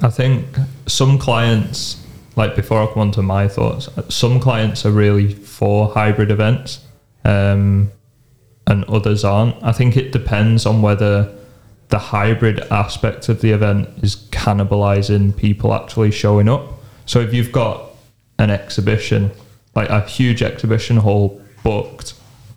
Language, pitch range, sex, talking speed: English, 105-115 Hz, male, 140 wpm